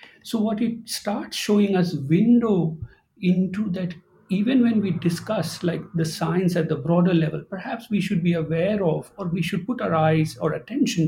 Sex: male